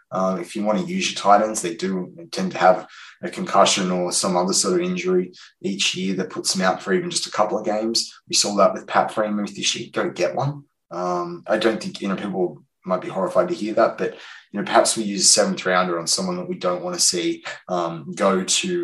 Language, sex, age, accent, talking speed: English, male, 20-39, Australian, 255 wpm